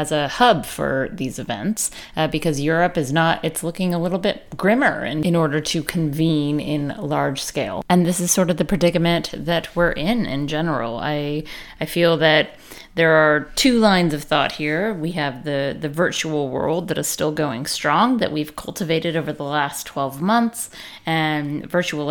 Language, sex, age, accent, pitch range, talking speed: English, female, 30-49, American, 145-175 Hz, 185 wpm